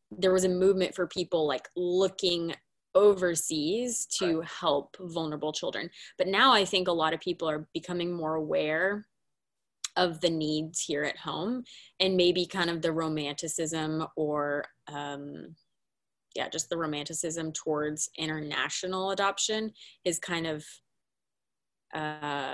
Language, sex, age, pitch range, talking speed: English, female, 20-39, 150-180 Hz, 135 wpm